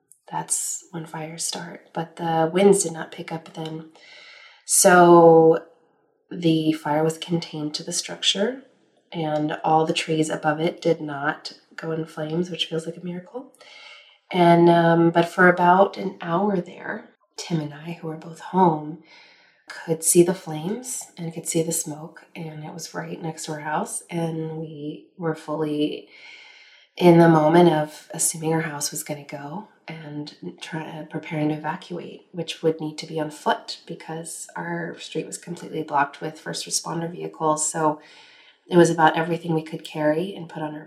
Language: English